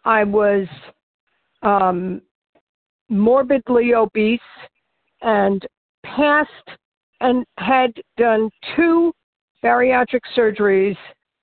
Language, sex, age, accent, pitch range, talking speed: English, female, 60-79, American, 205-250 Hz, 70 wpm